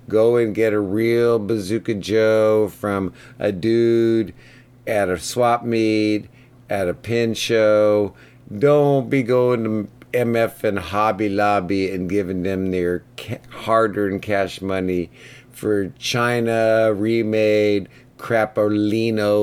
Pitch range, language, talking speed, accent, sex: 100-115 Hz, English, 115 wpm, American, male